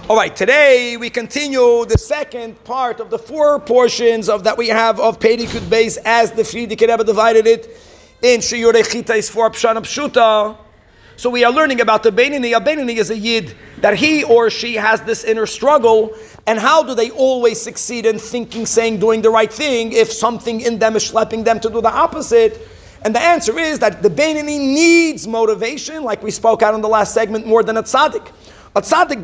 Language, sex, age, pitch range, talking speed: English, male, 40-59, 220-280 Hz, 205 wpm